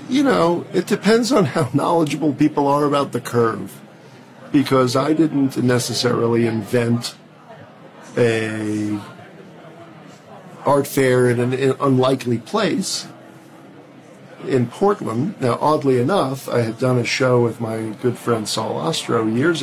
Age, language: 50-69, English